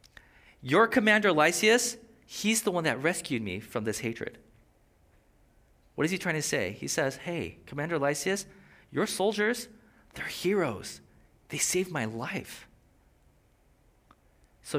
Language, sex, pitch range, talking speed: English, male, 130-180 Hz, 130 wpm